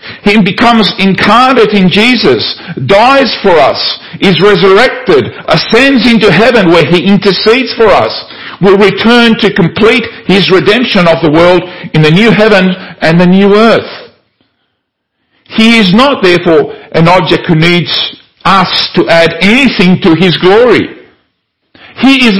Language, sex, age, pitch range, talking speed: English, male, 50-69, 135-220 Hz, 140 wpm